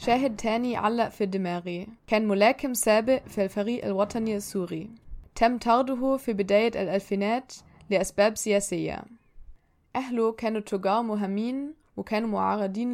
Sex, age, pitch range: female, 20-39, 200-235 Hz